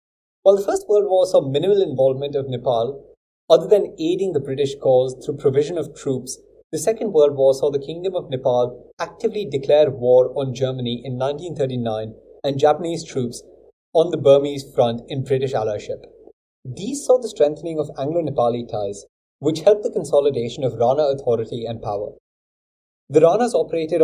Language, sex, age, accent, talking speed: English, male, 30-49, Indian, 160 wpm